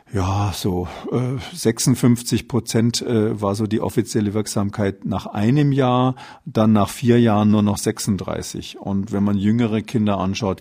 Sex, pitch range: male, 100-120 Hz